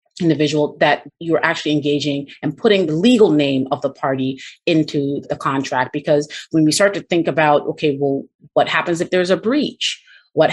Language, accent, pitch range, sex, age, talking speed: English, American, 145-175 Hz, female, 30-49, 180 wpm